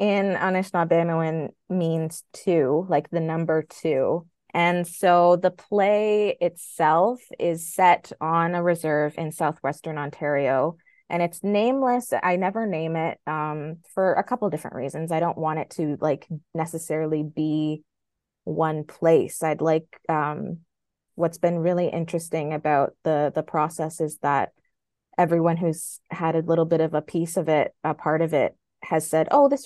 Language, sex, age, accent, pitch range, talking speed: English, female, 20-39, American, 155-175 Hz, 155 wpm